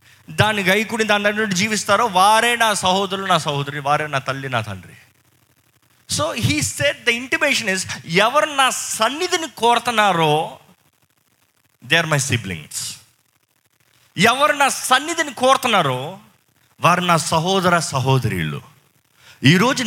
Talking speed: 115 wpm